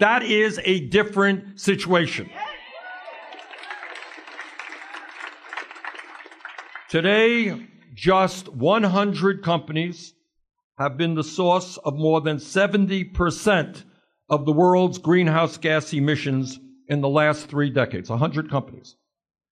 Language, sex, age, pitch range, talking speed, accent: English, male, 60-79, 150-200 Hz, 90 wpm, American